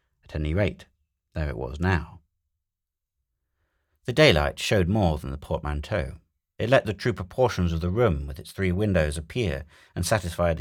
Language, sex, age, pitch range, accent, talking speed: English, male, 40-59, 80-90 Hz, British, 165 wpm